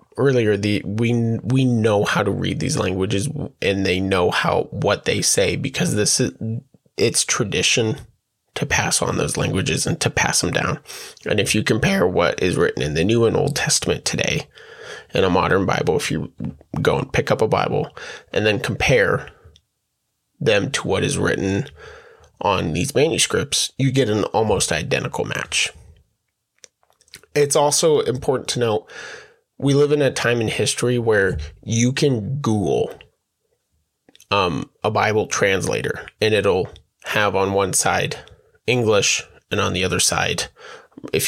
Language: English